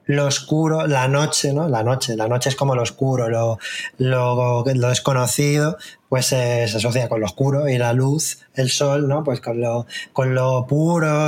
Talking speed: 180 wpm